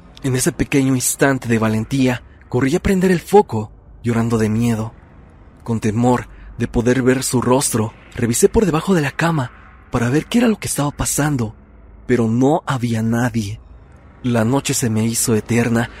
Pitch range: 110-140 Hz